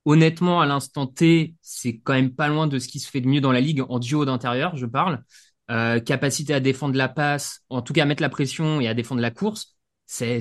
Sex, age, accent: male, 20-39, French